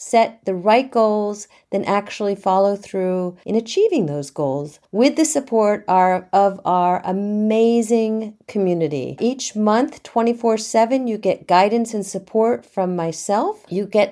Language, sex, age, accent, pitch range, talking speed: English, female, 50-69, American, 190-230 Hz, 140 wpm